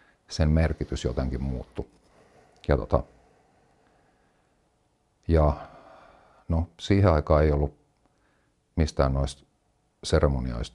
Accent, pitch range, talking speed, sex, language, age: native, 65-80 Hz, 85 wpm, male, Finnish, 50-69